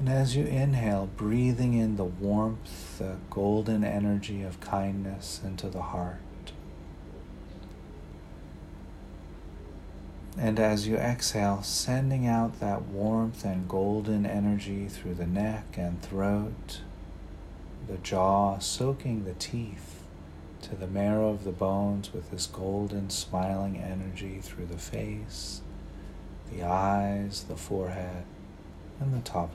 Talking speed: 120 wpm